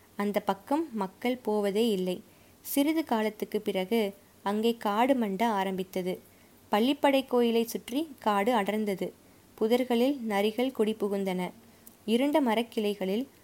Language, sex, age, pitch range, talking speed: Tamil, female, 20-39, 200-245 Hz, 100 wpm